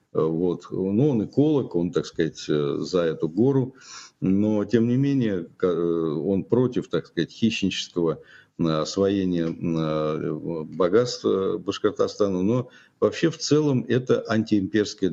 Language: Russian